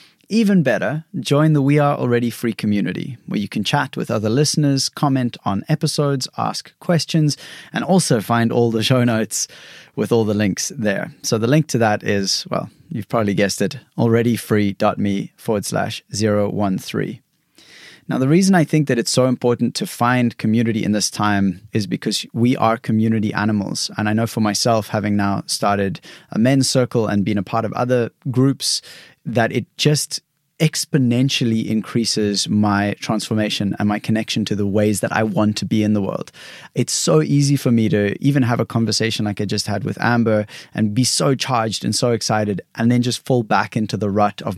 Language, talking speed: English, 190 wpm